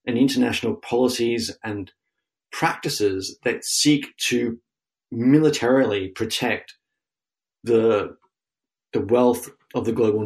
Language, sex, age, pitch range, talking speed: English, male, 30-49, 110-135 Hz, 95 wpm